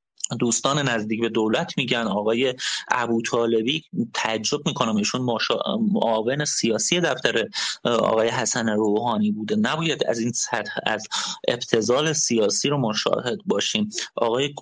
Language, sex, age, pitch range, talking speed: Persian, male, 30-49, 115-145 Hz, 110 wpm